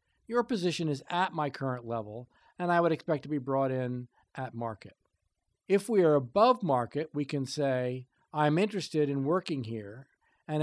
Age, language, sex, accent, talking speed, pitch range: 50-69, English, male, American, 175 wpm, 125-175 Hz